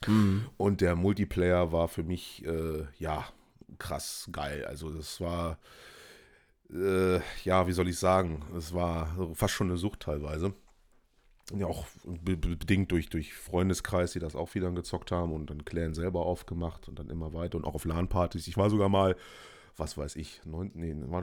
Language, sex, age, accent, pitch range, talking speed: German, male, 30-49, German, 80-95 Hz, 180 wpm